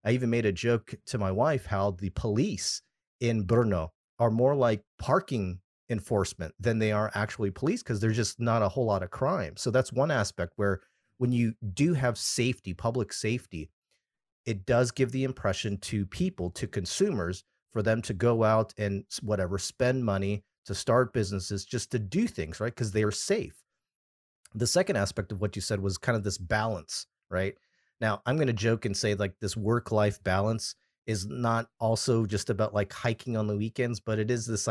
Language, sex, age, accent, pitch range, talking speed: English, male, 40-59, American, 100-120 Hz, 195 wpm